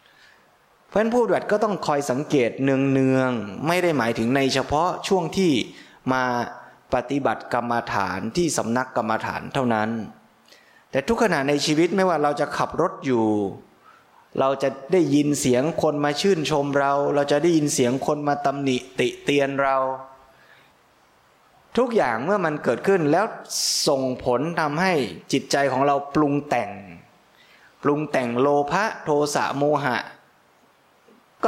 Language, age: Thai, 20-39